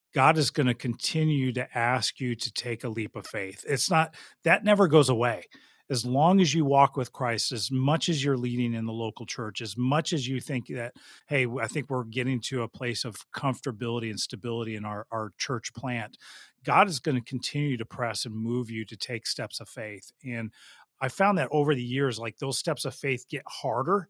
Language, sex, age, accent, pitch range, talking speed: English, male, 40-59, American, 120-145 Hz, 220 wpm